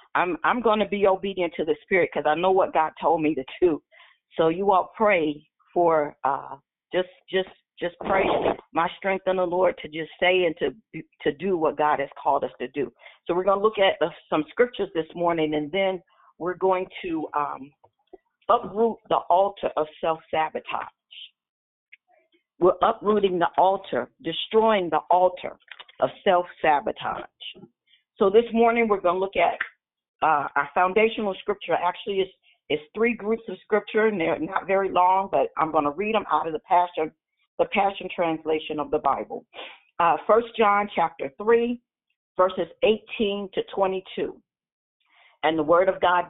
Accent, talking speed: American, 175 wpm